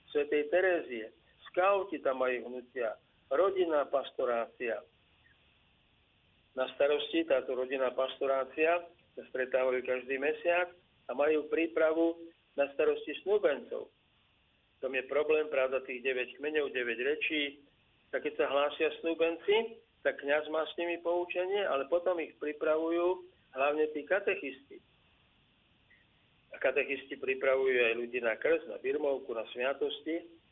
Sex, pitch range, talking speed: male, 130-180 Hz, 120 wpm